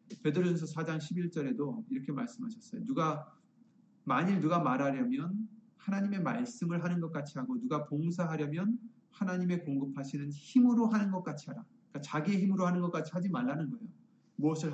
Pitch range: 160-230 Hz